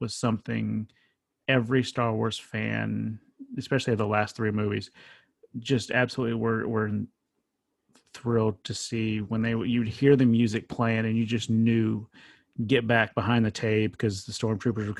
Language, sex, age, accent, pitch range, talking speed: English, male, 30-49, American, 110-120 Hz, 155 wpm